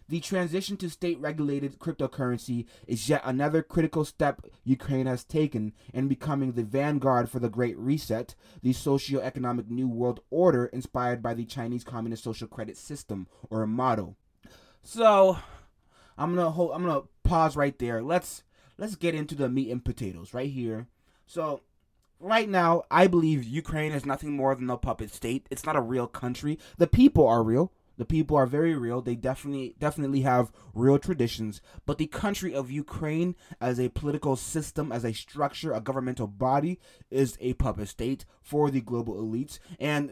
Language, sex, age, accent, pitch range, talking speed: English, male, 20-39, American, 120-155 Hz, 170 wpm